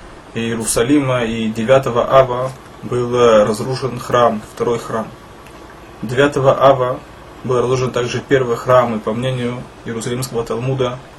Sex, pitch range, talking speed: male, 115-135 Hz, 115 wpm